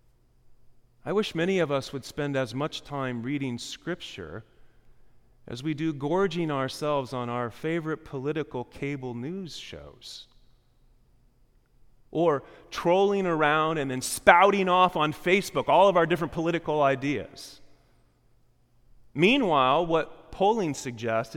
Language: English